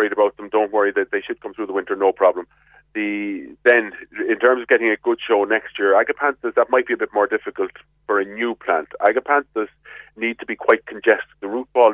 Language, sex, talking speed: English, male, 225 wpm